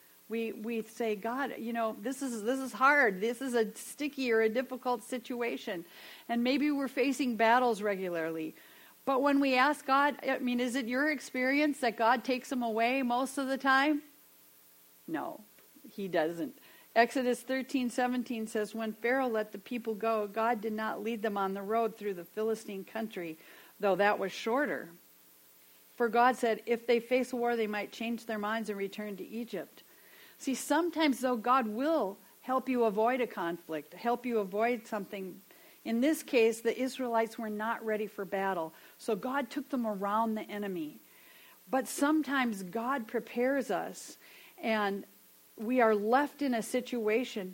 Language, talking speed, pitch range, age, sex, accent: English, 170 wpm, 220-270 Hz, 50-69, female, American